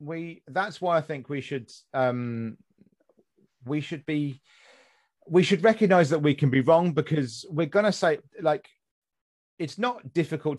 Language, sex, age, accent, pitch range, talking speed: English, male, 30-49, British, 125-170 Hz, 160 wpm